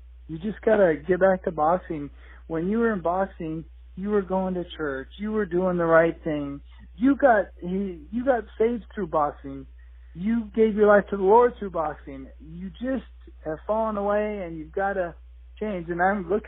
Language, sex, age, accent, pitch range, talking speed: English, male, 50-69, American, 135-200 Hz, 195 wpm